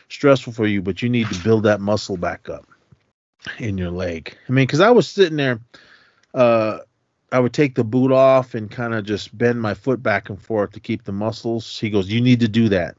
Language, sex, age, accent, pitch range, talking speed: English, male, 30-49, American, 100-125 Hz, 230 wpm